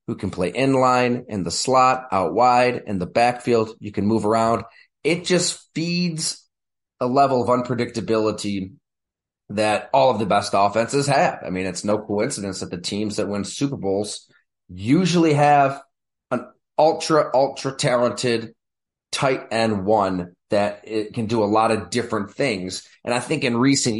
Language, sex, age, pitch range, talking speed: English, male, 30-49, 105-135 Hz, 165 wpm